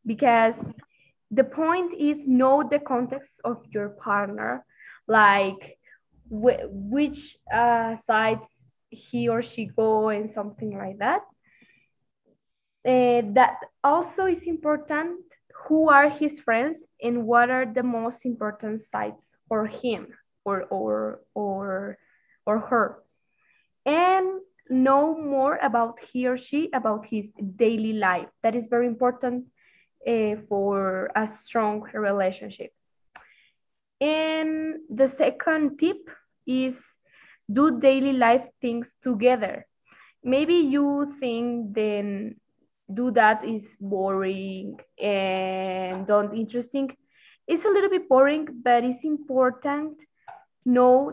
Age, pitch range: 20-39, 215-280 Hz